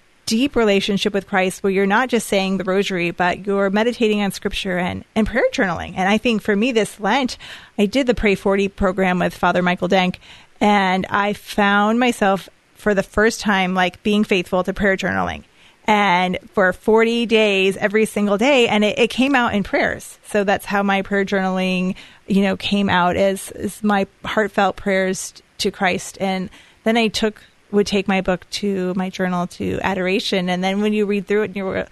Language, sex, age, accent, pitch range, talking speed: English, female, 30-49, American, 190-215 Hz, 195 wpm